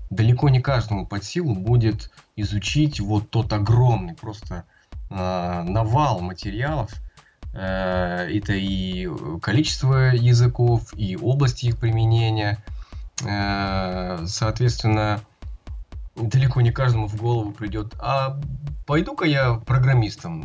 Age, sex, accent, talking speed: 20-39, male, native, 105 wpm